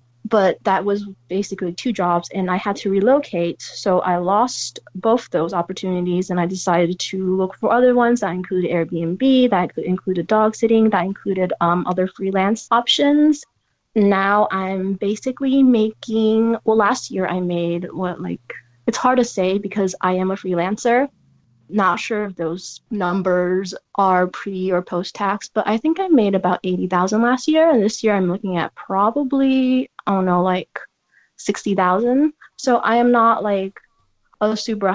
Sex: female